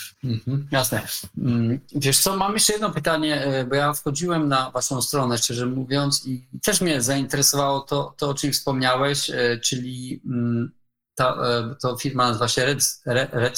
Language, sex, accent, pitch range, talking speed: Polish, male, native, 120-145 Hz, 145 wpm